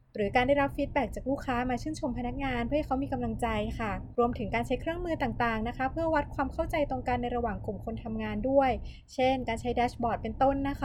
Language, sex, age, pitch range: Thai, female, 20-39, 230-280 Hz